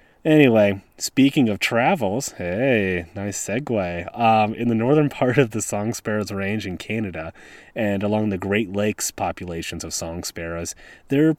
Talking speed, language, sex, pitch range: 155 wpm, English, male, 90-125 Hz